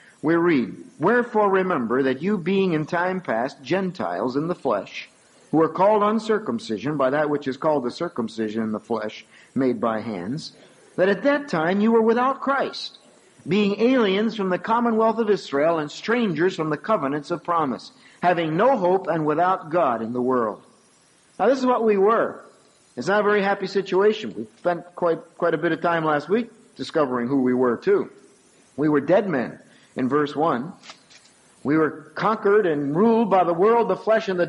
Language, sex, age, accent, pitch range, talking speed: English, male, 50-69, American, 150-220 Hz, 190 wpm